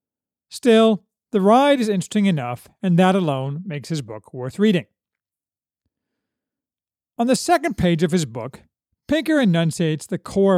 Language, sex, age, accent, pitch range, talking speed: English, male, 50-69, American, 170-240 Hz, 140 wpm